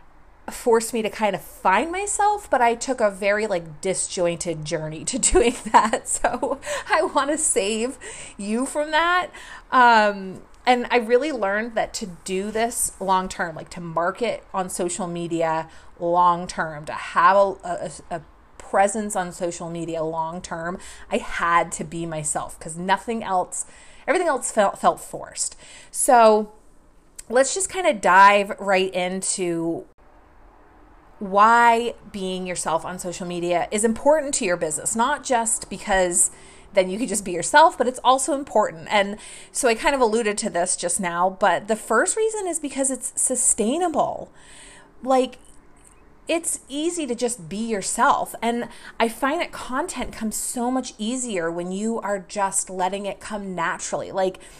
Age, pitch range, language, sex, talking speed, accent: 30-49, 180-250 Hz, English, female, 155 wpm, American